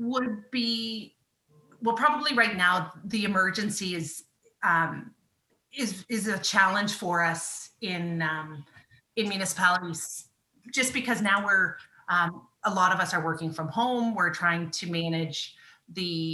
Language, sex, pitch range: English, female, 165-215 Hz